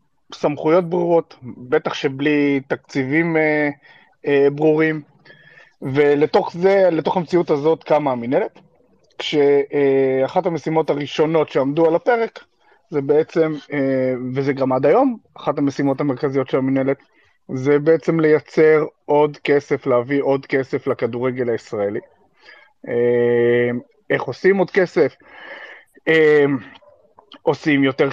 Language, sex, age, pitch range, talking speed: Hebrew, male, 30-49, 130-155 Hz, 110 wpm